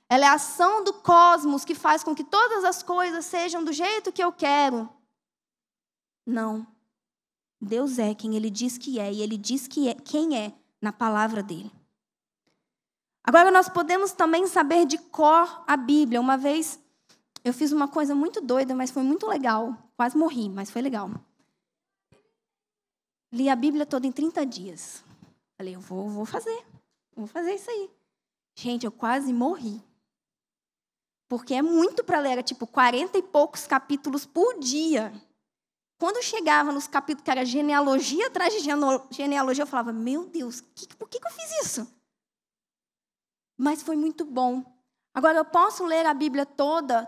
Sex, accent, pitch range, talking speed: female, Brazilian, 250-350 Hz, 160 wpm